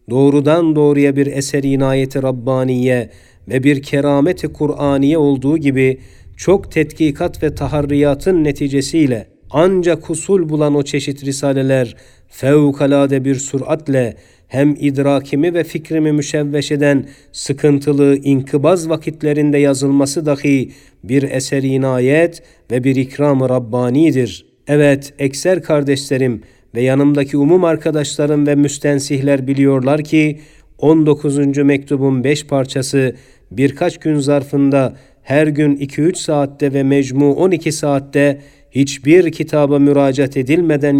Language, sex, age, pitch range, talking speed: Turkish, male, 50-69, 135-150 Hz, 110 wpm